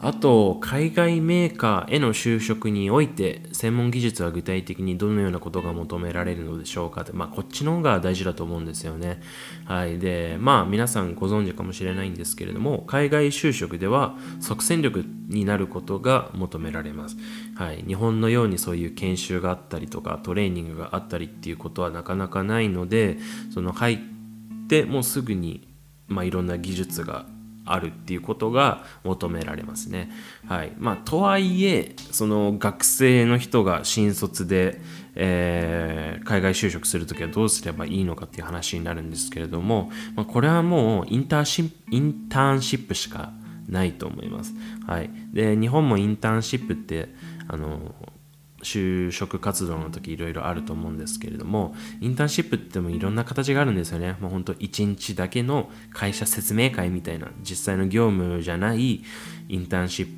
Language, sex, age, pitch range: Japanese, male, 20-39, 85-115 Hz